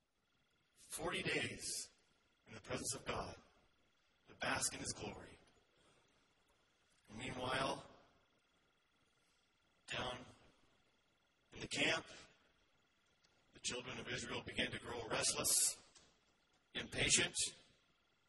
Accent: American